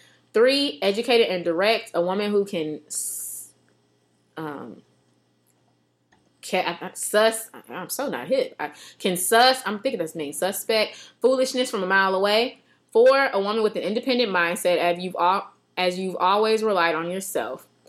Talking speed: 160 wpm